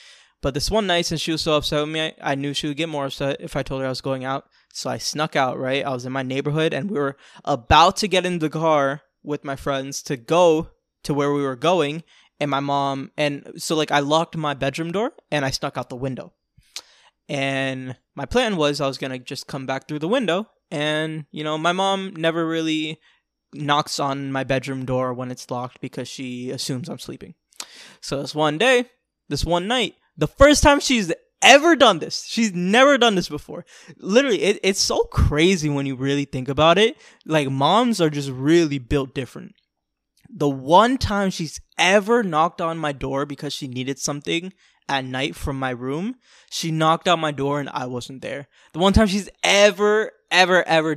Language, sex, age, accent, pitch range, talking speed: English, male, 20-39, American, 135-175 Hz, 205 wpm